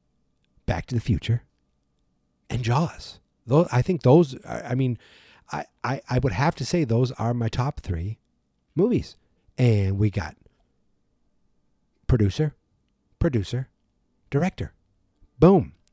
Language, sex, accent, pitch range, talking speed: English, male, American, 110-145 Hz, 125 wpm